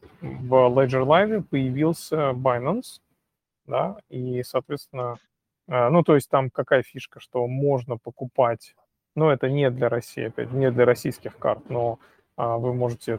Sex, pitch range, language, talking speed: male, 120-150 Hz, Russian, 140 wpm